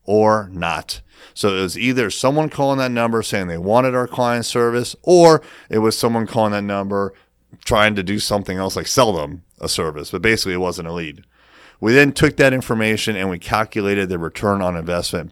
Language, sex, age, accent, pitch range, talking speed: English, male, 30-49, American, 95-120 Hz, 200 wpm